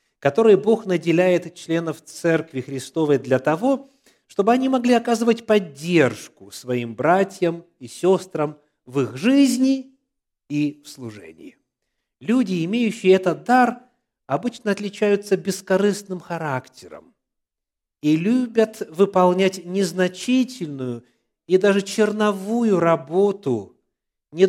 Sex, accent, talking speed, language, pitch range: male, native, 100 wpm, Russian, 130-200 Hz